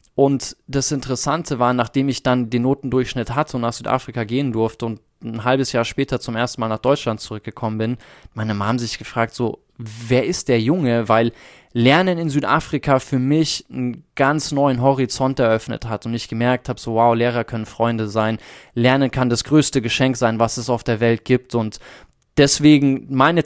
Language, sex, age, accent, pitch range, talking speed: German, male, 20-39, German, 120-145 Hz, 185 wpm